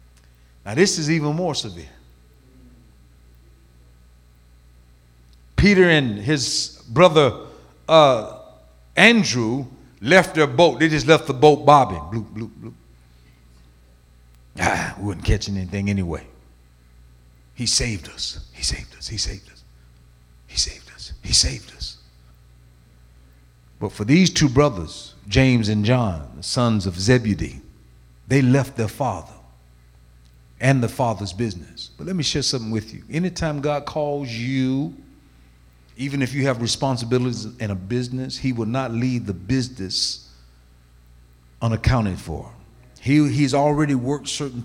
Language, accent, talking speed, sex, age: English, American, 130 wpm, male, 50-69